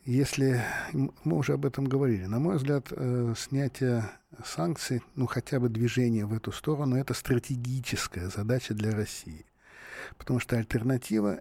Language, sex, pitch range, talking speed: Russian, male, 110-135 Hz, 140 wpm